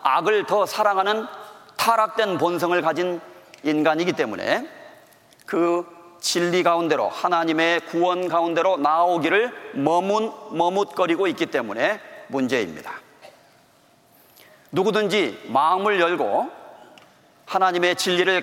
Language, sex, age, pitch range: Korean, male, 40-59, 175-210 Hz